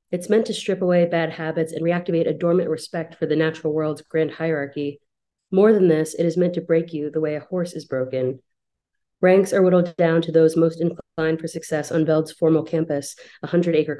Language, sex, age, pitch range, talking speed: English, female, 30-49, 155-170 Hz, 210 wpm